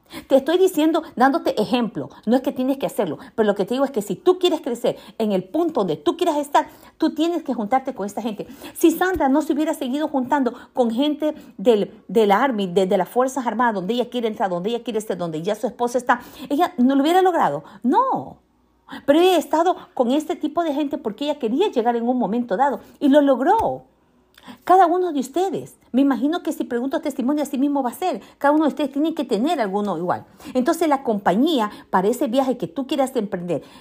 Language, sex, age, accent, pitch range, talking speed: Spanish, female, 50-69, American, 215-305 Hz, 220 wpm